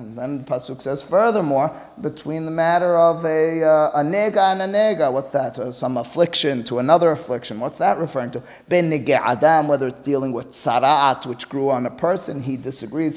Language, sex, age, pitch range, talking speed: English, male, 30-49, 130-180 Hz, 190 wpm